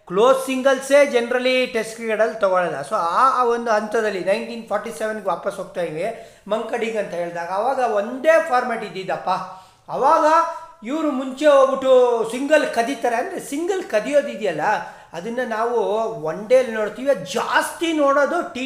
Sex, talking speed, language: male, 120 wpm, Kannada